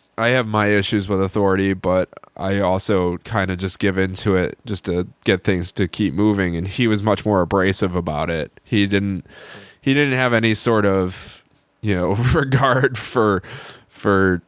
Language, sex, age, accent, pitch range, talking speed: English, male, 20-39, American, 90-110 Hz, 180 wpm